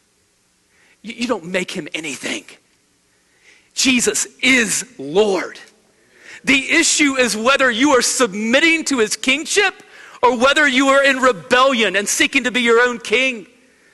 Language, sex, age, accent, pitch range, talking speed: English, male, 40-59, American, 180-280 Hz, 135 wpm